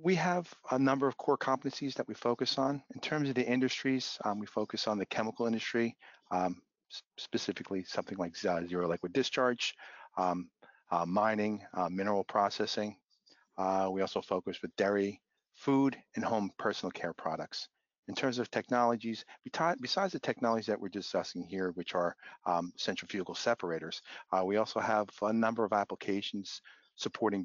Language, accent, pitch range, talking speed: English, American, 95-120 Hz, 160 wpm